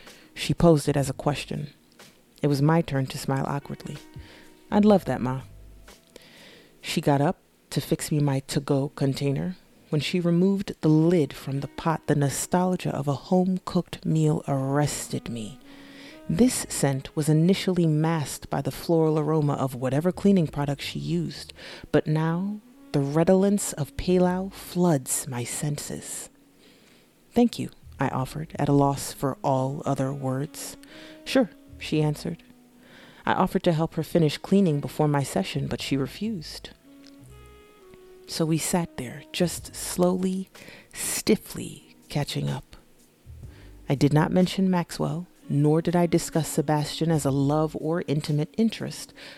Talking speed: 145 wpm